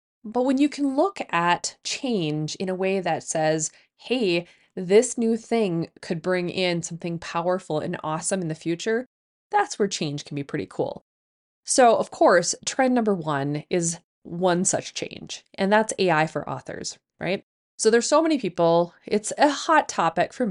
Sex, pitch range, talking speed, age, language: female, 170-225 Hz, 175 wpm, 20-39, English